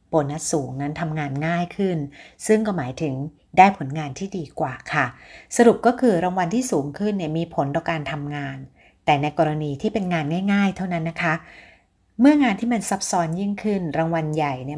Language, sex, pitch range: Thai, female, 145-180 Hz